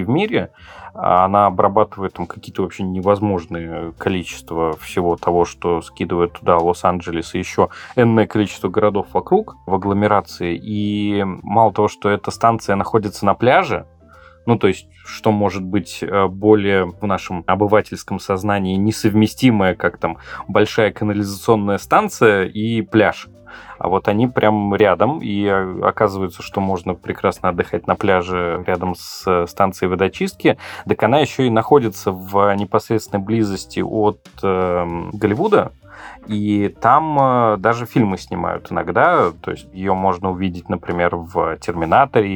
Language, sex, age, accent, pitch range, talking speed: Russian, male, 20-39, native, 90-110 Hz, 130 wpm